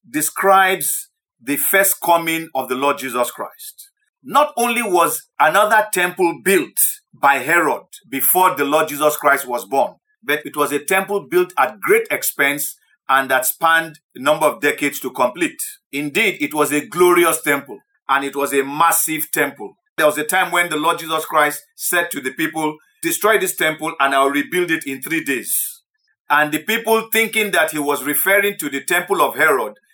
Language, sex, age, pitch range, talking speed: English, male, 50-69, 150-220 Hz, 180 wpm